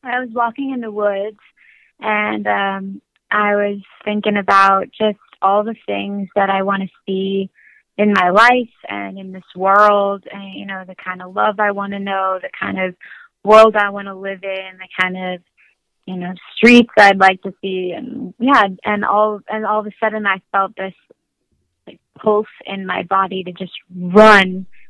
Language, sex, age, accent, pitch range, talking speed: English, female, 20-39, American, 190-210 Hz, 190 wpm